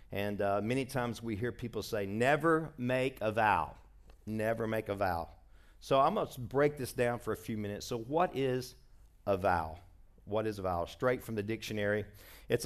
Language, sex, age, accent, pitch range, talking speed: English, male, 50-69, American, 100-130 Hz, 190 wpm